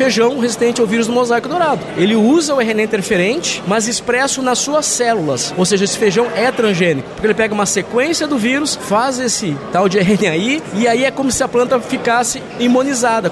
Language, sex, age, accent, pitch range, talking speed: Portuguese, male, 20-39, Brazilian, 205-255 Hz, 200 wpm